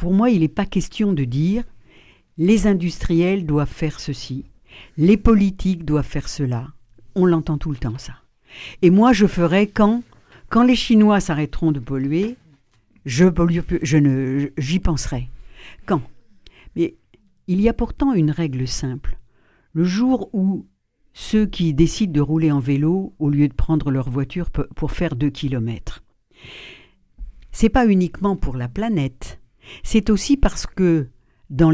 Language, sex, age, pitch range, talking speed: French, female, 60-79, 135-190 Hz, 155 wpm